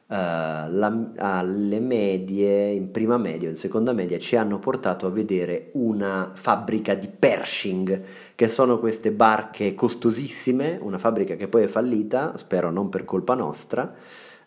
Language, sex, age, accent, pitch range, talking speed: Italian, male, 30-49, native, 95-115 Hz, 140 wpm